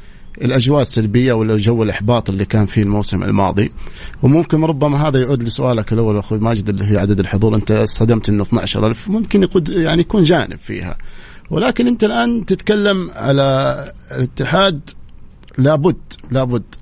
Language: Arabic